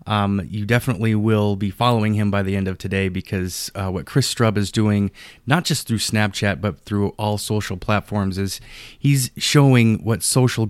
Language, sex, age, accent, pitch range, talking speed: English, male, 20-39, American, 100-115 Hz, 185 wpm